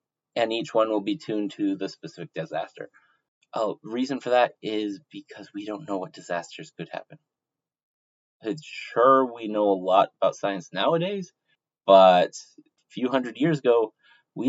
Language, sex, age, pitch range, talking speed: English, male, 30-49, 105-150 Hz, 165 wpm